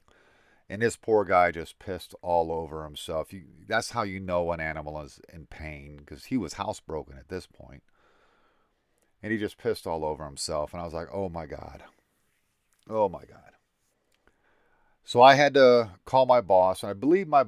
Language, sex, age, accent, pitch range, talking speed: English, male, 40-59, American, 80-105 Hz, 180 wpm